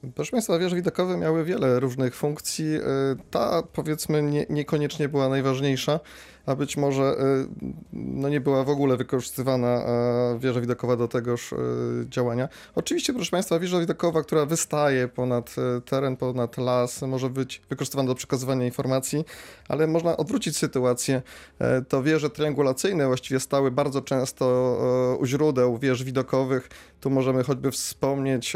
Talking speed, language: 130 wpm, Polish